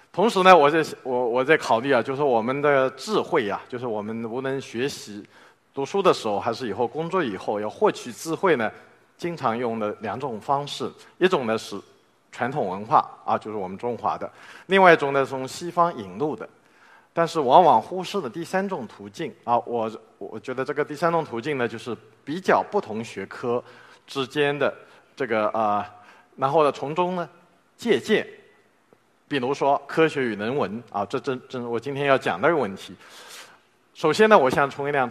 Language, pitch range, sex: Chinese, 120-180 Hz, male